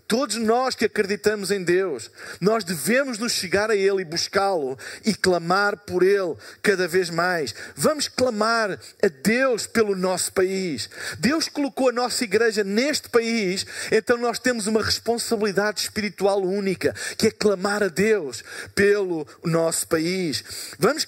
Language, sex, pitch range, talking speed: Portuguese, male, 205-250 Hz, 145 wpm